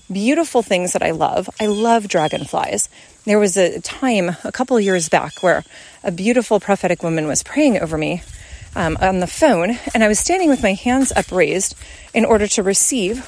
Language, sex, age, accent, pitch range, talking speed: English, female, 30-49, American, 195-270 Hz, 185 wpm